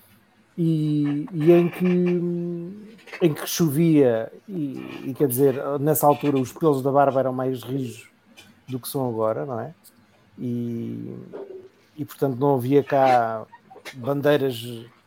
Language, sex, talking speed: English, male, 130 wpm